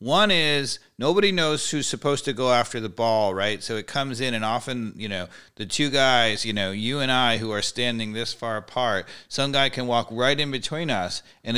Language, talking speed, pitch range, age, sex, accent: English, 225 wpm, 125-170 Hz, 40-59, male, American